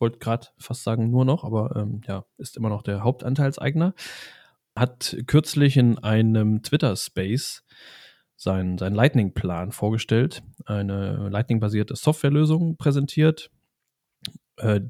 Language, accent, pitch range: German, German, 105-130 Hz